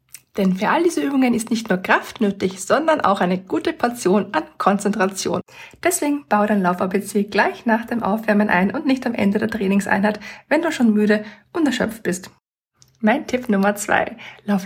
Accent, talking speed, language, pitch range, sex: German, 180 wpm, German, 195-265 Hz, female